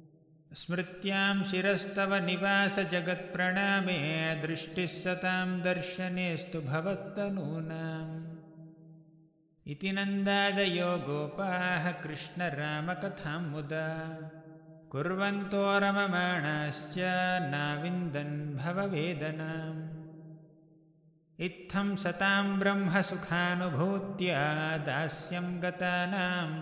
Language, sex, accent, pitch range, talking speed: English, male, Indian, 160-185 Hz, 60 wpm